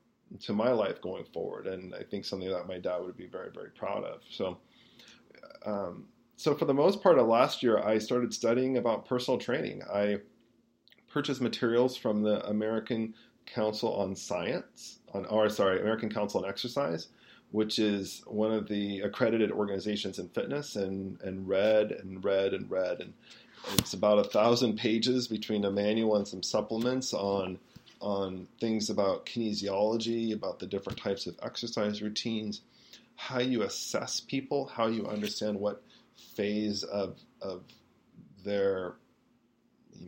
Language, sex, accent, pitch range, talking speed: English, male, American, 100-115 Hz, 155 wpm